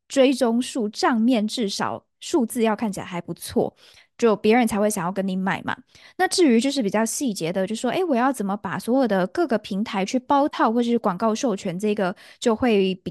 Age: 10-29